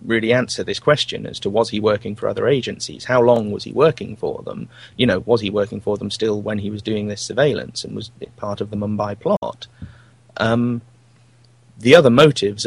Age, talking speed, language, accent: 30-49, 215 wpm, English, British